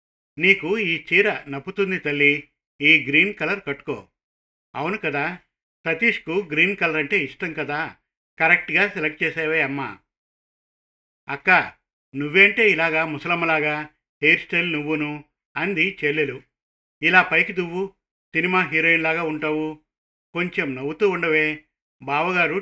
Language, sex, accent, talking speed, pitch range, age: Telugu, male, native, 105 wpm, 145-175 Hz, 50-69